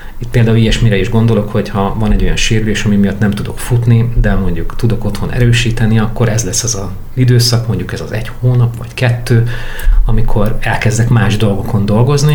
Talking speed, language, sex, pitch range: 195 wpm, Hungarian, male, 100-120 Hz